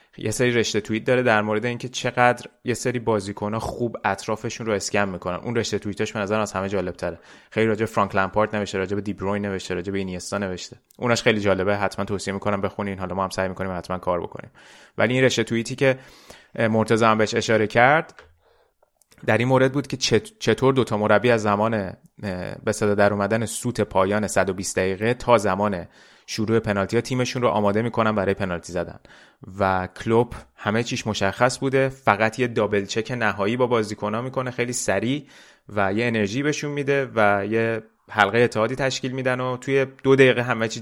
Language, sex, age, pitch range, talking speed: Persian, male, 30-49, 100-125 Hz, 185 wpm